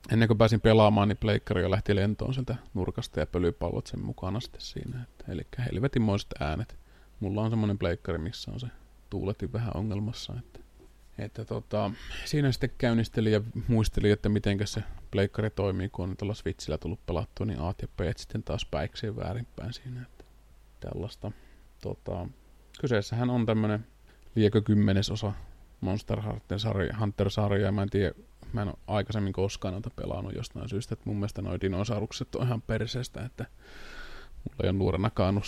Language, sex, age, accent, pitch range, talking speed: Finnish, male, 30-49, native, 100-115 Hz, 155 wpm